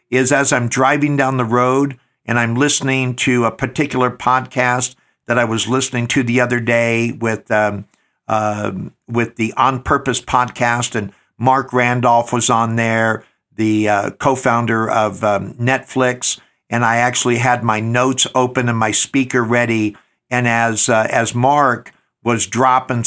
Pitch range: 115-135 Hz